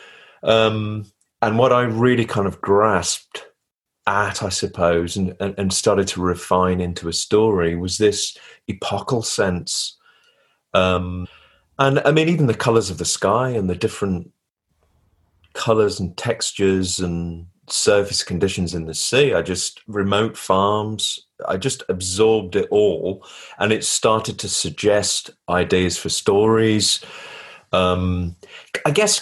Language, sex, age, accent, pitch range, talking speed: English, male, 30-49, British, 90-115 Hz, 135 wpm